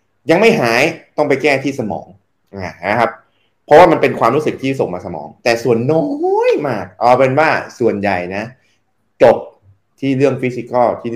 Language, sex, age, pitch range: Thai, male, 20-39, 105-140 Hz